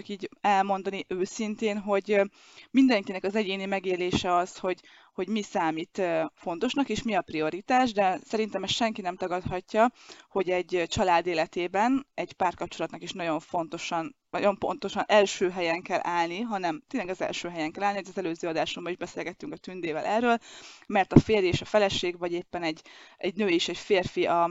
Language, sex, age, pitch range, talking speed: Hungarian, female, 20-39, 175-225 Hz, 170 wpm